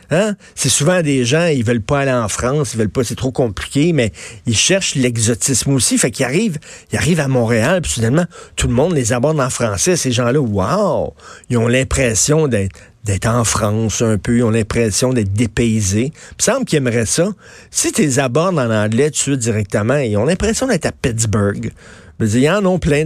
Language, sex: French, male